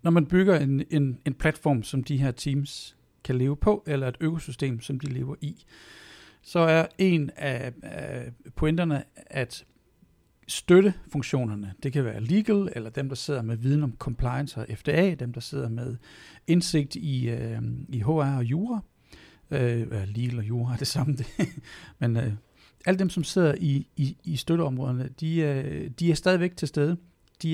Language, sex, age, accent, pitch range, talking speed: Danish, male, 60-79, native, 130-165 Hz, 175 wpm